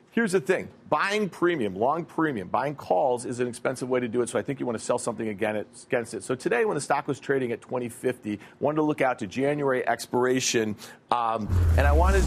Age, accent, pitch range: 40-59, American, 120-145 Hz